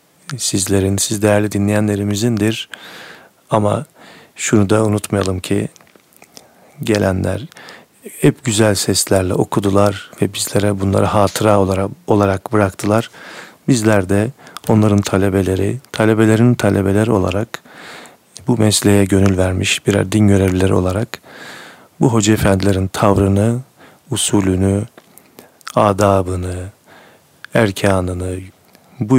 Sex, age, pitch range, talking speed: male, 40-59, 95-110 Hz, 90 wpm